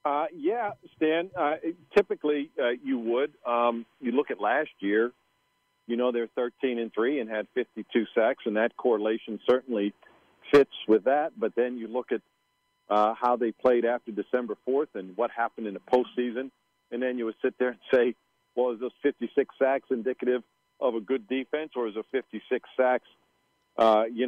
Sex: male